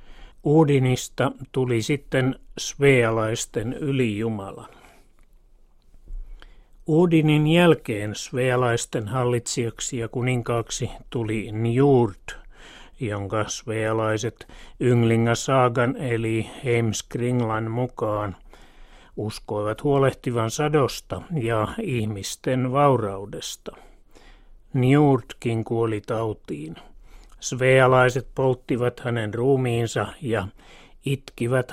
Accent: native